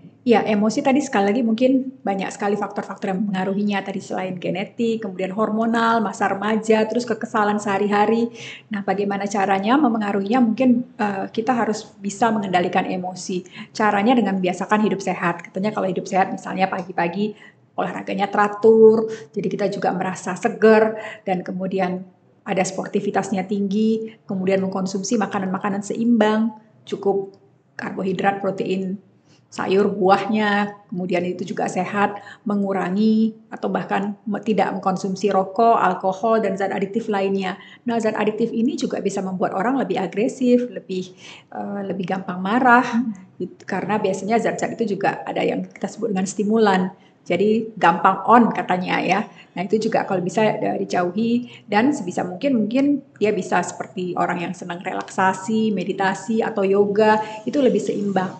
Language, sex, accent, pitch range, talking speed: Indonesian, female, native, 190-225 Hz, 140 wpm